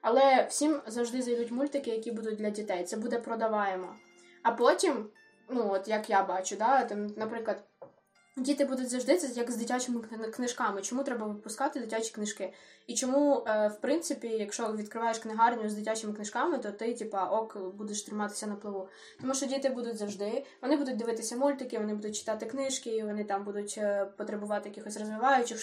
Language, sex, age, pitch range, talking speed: Ukrainian, female, 10-29, 210-265 Hz, 170 wpm